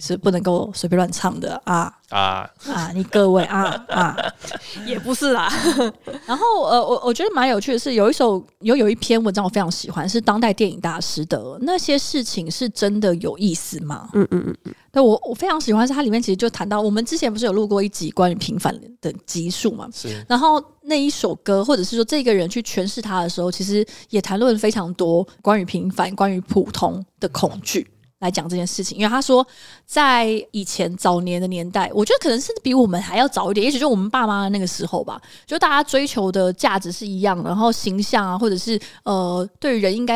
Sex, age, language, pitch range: female, 20-39, Chinese, 185-245 Hz